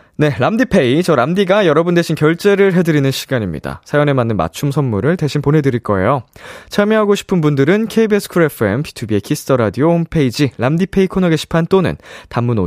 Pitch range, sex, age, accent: 110-170 Hz, male, 20-39, native